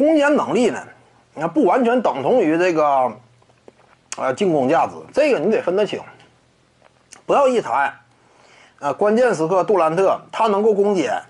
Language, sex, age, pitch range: Chinese, male, 30-49, 190-300 Hz